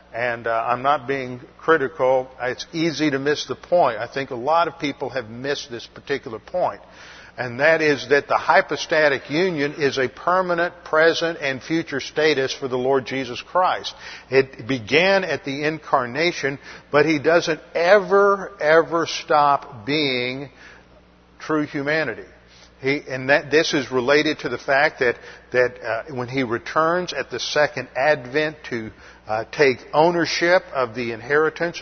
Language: English